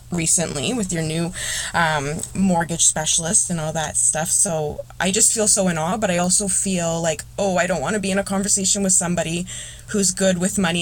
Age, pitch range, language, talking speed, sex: 20-39, 150-180 Hz, English, 210 wpm, female